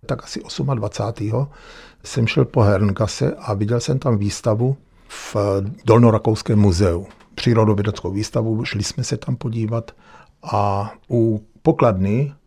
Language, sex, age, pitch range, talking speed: Czech, male, 50-69, 105-125 Hz, 120 wpm